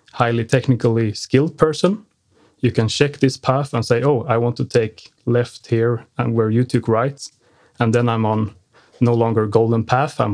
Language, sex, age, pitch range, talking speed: Swedish, male, 30-49, 115-130 Hz, 185 wpm